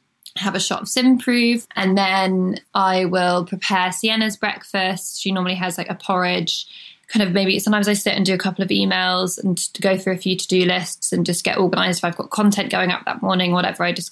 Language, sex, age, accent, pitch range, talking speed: English, female, 20-39, British, 180-200 Hz, 225 wpm